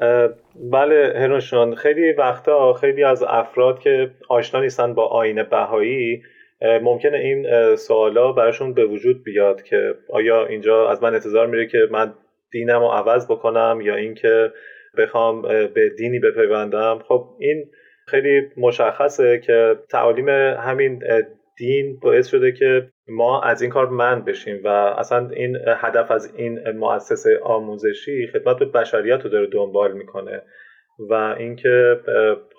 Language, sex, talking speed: Persian, male, 135 wpm